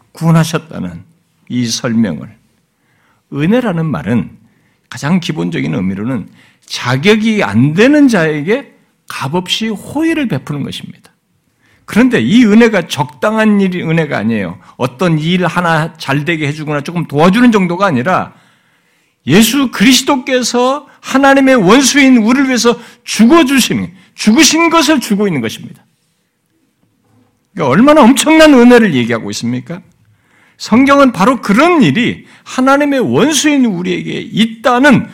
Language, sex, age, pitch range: Korean, male, 60-79, 170-265 Hz